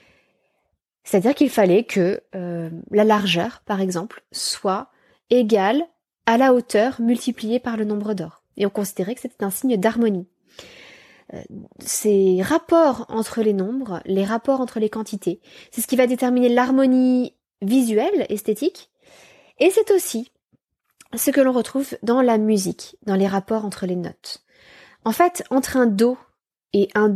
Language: French